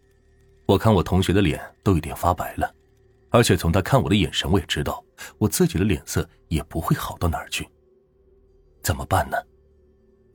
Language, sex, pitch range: Chinese, male, 80-110 Hz